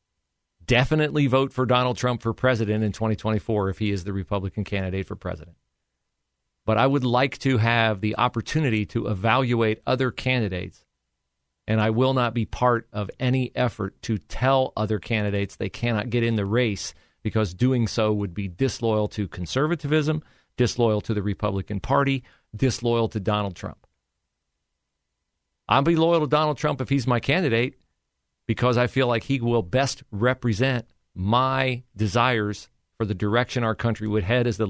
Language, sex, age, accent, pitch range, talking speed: English, male, 40-59, American, 105-125 Hz, 165 wpm